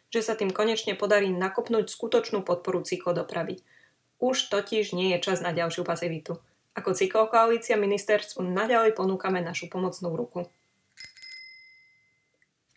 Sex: female